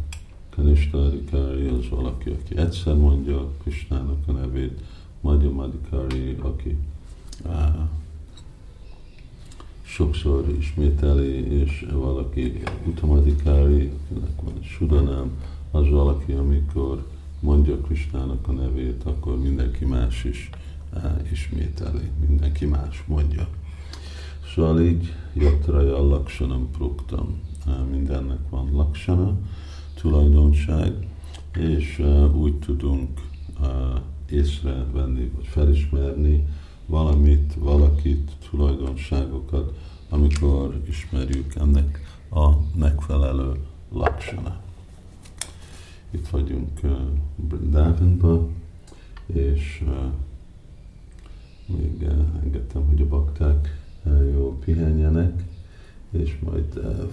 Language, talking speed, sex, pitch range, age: Hungarian, 85 wpm, male, 70-80 Hz, 50-69